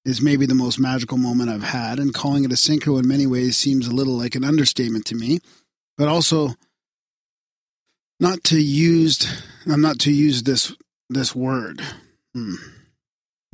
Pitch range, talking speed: 120-145 Hz, 160 wpm